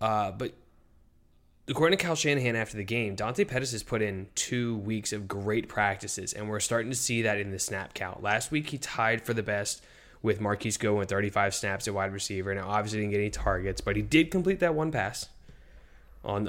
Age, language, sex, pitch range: 10-29, English, male, 100-120 Hz